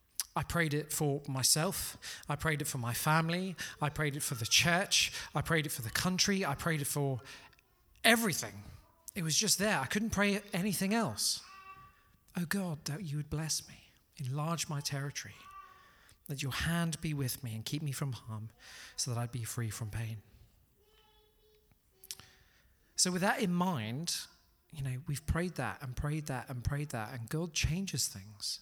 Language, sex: English, male